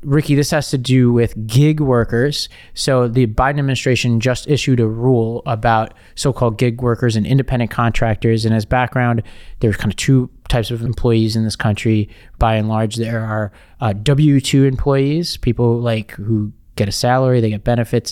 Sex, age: male, 20-39